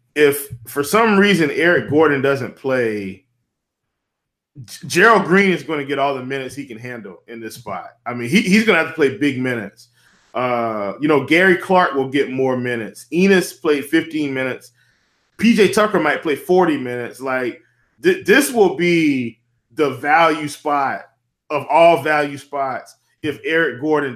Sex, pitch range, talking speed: male, 120-170 Hz, 165 wpm